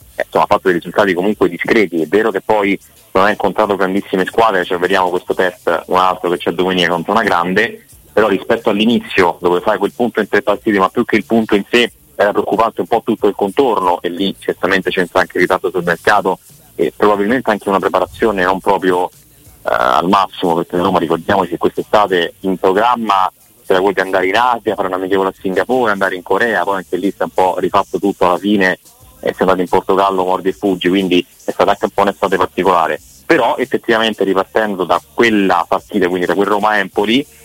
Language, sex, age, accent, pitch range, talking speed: Italian, male, 30-49, native, 90-105 Hz, 205 wpm